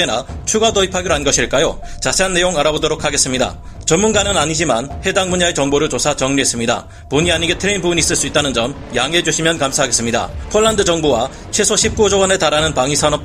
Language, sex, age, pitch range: Korean, male, 30-49, 140-190 Hz